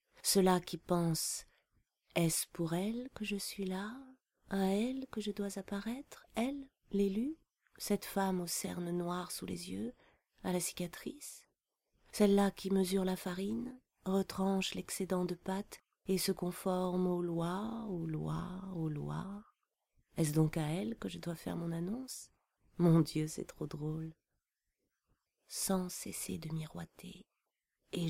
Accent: French